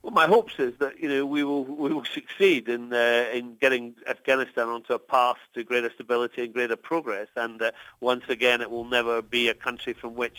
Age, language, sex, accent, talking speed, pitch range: 50-69, English, male, British, 220 wpm, 120-145 Hz